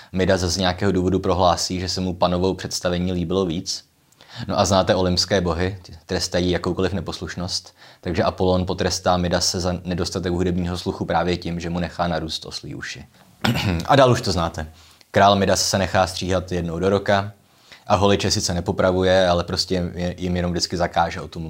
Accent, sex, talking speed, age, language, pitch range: native, male, 175 wpm, 20-39, Czech, 90-105 Hz